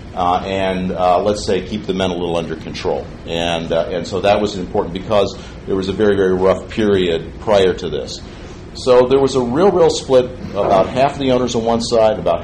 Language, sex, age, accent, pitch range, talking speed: English, male, 50-69, American, 90-105 Hz, 215 wpm